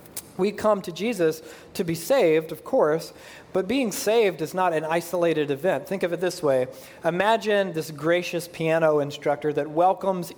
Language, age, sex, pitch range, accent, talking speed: English, 40-59, male, 150-190 Hz, American, 170 wpm